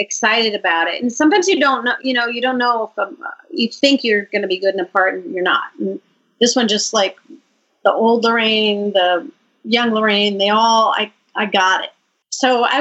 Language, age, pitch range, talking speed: English, 30-49, 190-245 Hz, 220 wpm